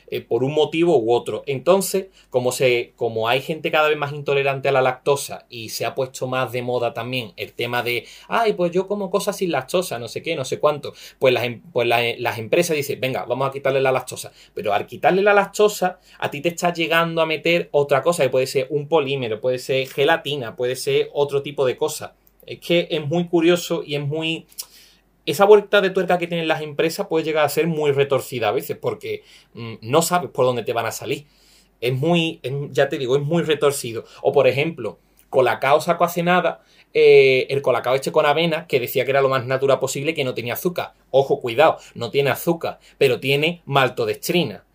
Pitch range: 130-175 Hz